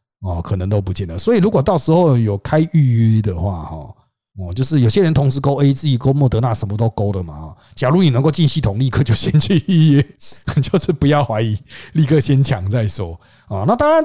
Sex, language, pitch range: male, Chinese, 110-170 Hz